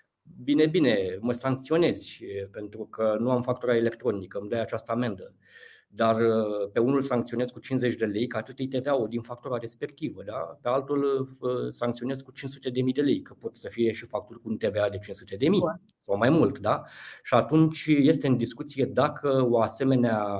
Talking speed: 185 wpm